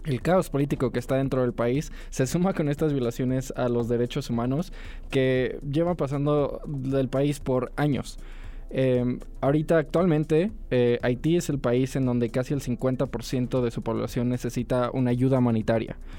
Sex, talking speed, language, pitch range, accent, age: male, 165 wpm, English, 125-145 Hz, Mexican, 20-39